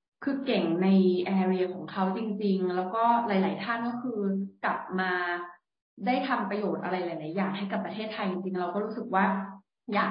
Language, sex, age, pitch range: Thai, female, 20-39, 185-220 Hz